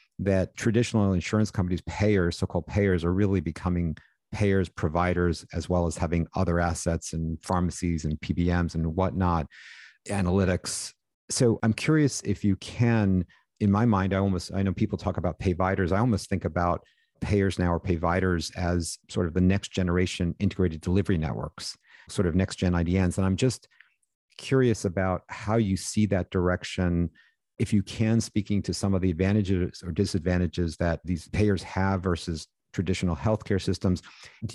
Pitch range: 85-105 Hz